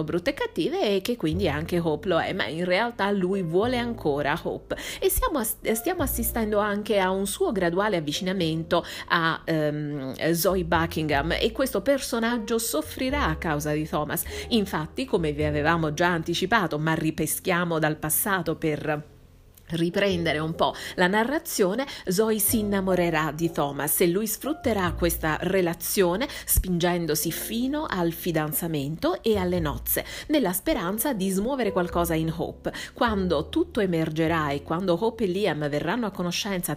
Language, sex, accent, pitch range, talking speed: Italian, female, native, 160-225 Hz, 145 wpm